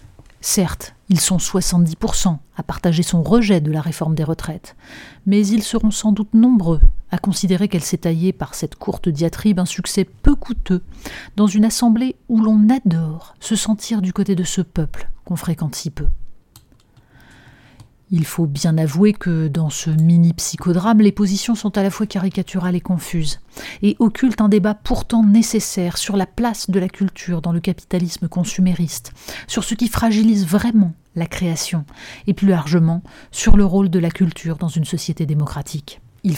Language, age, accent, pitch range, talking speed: French, 40-59, French, 165-205 Hz, 170 wpm